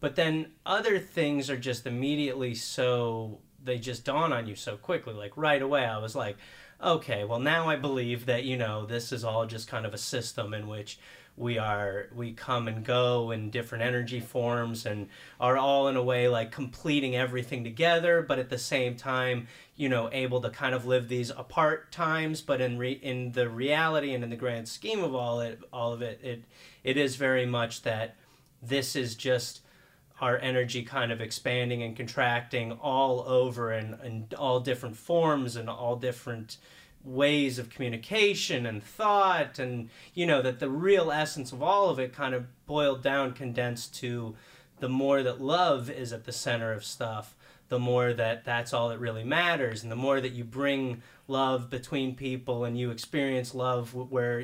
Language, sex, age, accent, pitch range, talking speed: English, male, 30-49, American, 120-135 Hz, 190 wpm